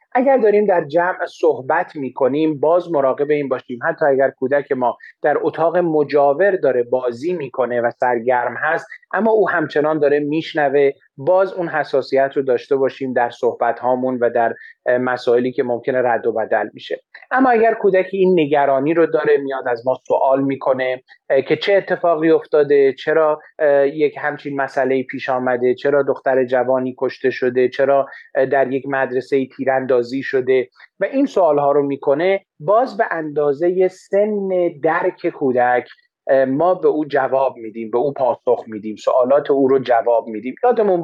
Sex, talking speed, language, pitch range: male, 155 wpm, Persian, 130-175 Hz